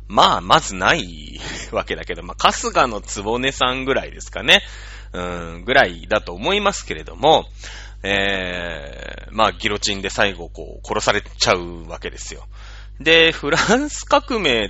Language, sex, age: Japanese, male, 30-49